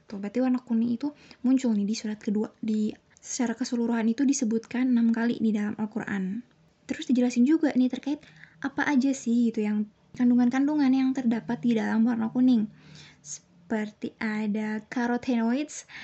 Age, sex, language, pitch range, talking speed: 20-39, female, Indonesian, 220-255 Hz, 145 wpm